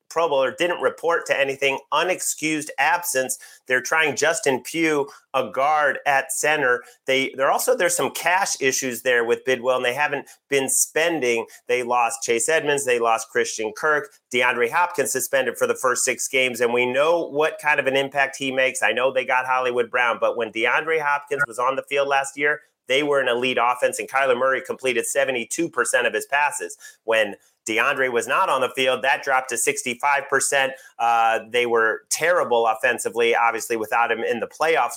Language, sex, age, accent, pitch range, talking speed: English, male, 30-49, American, 125-160 Hz, 185 wpm